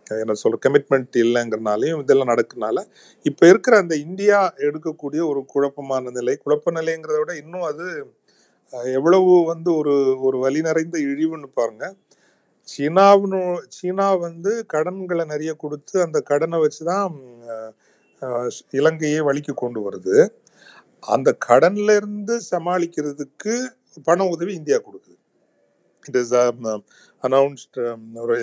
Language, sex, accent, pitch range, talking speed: Tamil, male, native, 130-180 Hz, 105 wpm